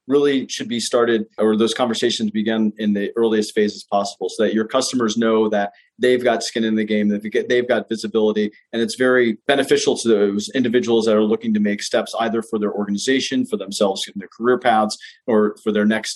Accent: American